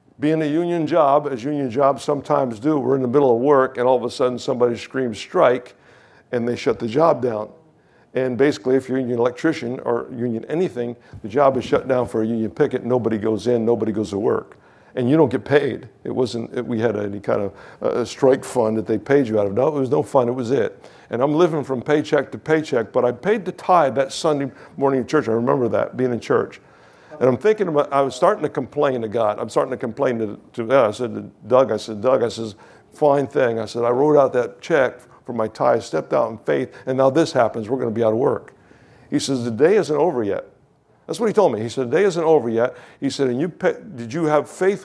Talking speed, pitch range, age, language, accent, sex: 255 wpm, 120-150 Hz, 60-79, English, American, male